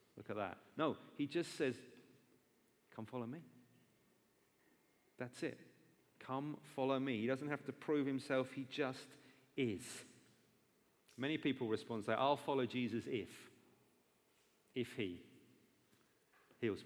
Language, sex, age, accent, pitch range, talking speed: English, male, 40-59, British, 110-140 Hz, 125 wpm